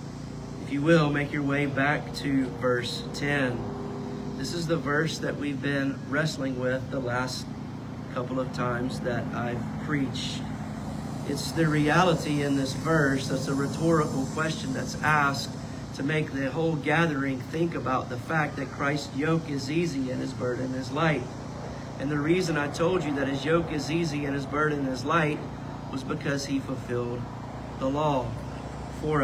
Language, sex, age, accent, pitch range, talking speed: English, male, 40-59, American, 130-150 Hz, 165 wpm